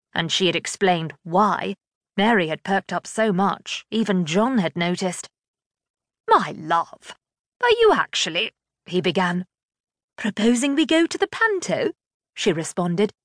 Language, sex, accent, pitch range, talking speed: English, female, British, 185-250 Hz, 135 wpm